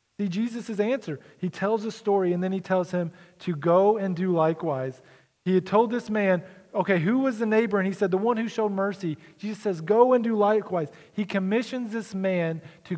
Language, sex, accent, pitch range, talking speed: English, male, American, 160-200 Hz, 215 wpm